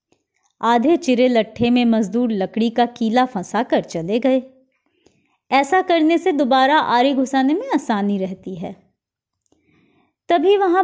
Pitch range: 220-310 Hz